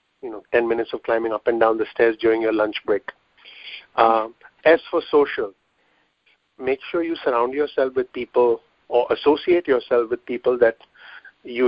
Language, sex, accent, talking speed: English, male, Indian, 170 wpm